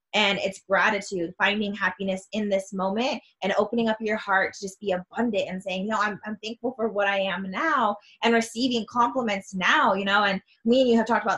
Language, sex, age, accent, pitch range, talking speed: English, female, 20-39, American, 195-230 Hz, 215 wpm